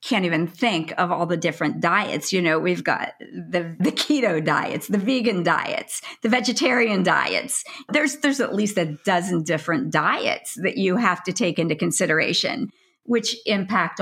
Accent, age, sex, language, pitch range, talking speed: American, 50-69, female, English, 175-235 Hz, 165 wpm